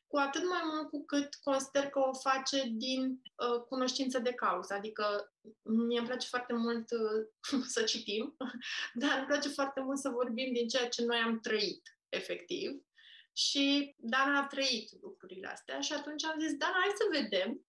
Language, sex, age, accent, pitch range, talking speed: Romanian, female, 20-39, native, 240-310 Hz, 175 wpm